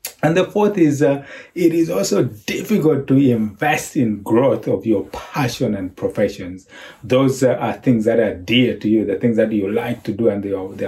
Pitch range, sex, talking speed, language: 110-140 Hz, male, 205 wpm, English